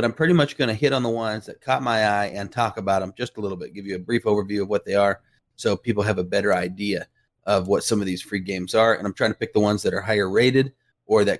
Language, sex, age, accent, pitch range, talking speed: English, male, 30-49, American, 100-120 Hz, 305 wpm